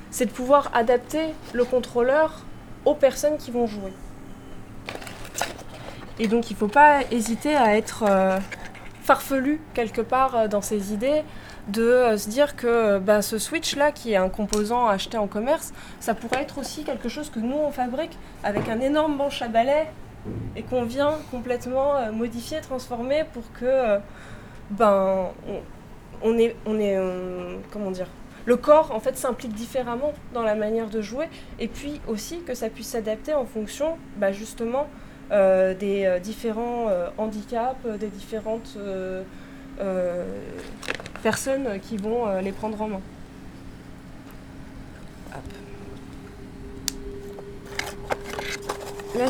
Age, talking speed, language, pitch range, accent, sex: 20-39, 135 wpm, French, 210-285 Hz, French, female